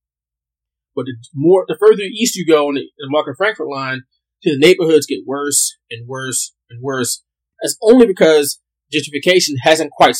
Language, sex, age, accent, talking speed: English, male, 20-39, American, 170 wpm